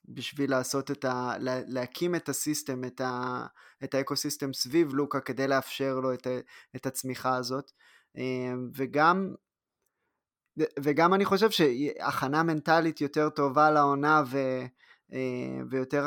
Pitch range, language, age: 135-155 Hz, Hebrew, 20-39